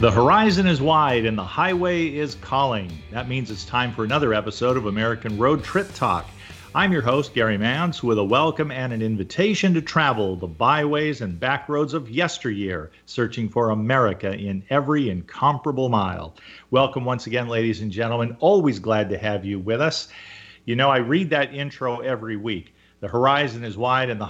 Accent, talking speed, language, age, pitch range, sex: American, 185 wpm, English, 50-69, 105-140 Hz, male